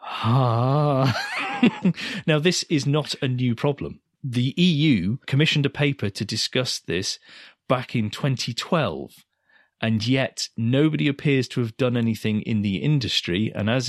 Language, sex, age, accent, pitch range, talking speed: English, male, 40-59, British, 100-145 Hz, 140 wpm